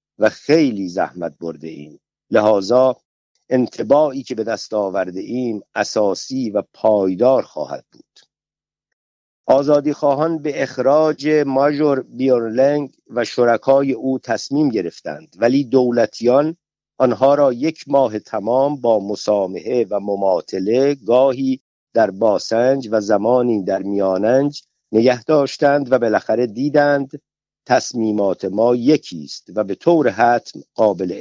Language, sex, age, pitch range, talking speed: Persian, male, 50-69, 105-145 Hz, 115 wpm